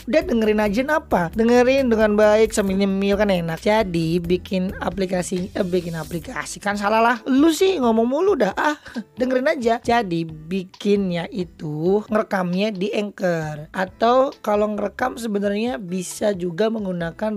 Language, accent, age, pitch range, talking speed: Indonesian, native, 20-39, 190-235 Hz, 140 wpm